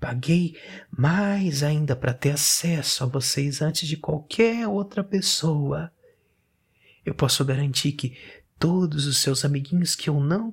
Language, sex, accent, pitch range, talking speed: Portuguese, male, Brazilian, 130-175 Hz, 135 wpm